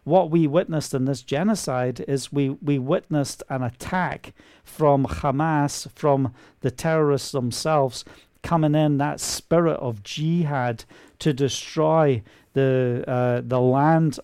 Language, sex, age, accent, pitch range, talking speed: English, male, 50-69, British, 130-155 Hz, 125 wpm